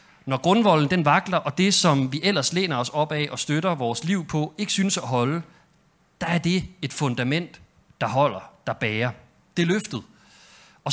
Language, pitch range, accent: Danish, 135-185 Hz, native